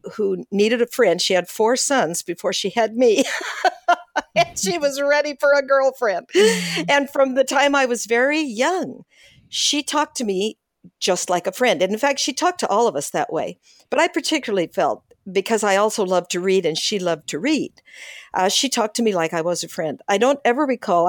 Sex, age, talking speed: female, 50-69, 215 wpm